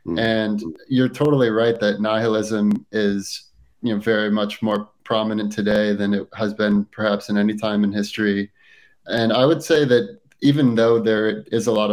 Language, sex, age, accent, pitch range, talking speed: English, male, 30-49, American, 105-115 Hz, 175 wpm